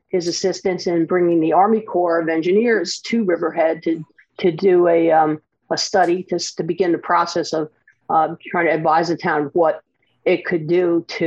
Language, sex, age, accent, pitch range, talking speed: English, female, 50-69, American, 160-190 Hz, 190 wpm